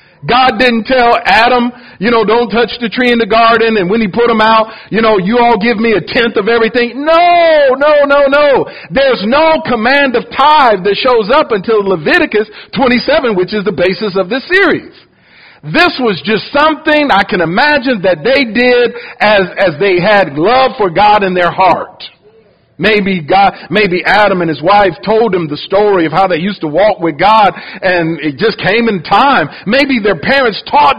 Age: 50-69